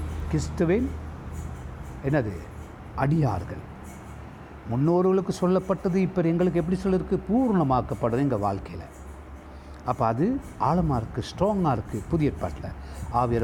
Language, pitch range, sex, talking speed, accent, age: Tamil, 95-155 Hz, male, 95 wpm, native, 60-79